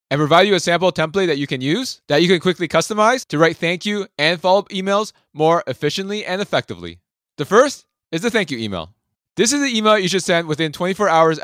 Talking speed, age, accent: 225 wpm, 20-39, American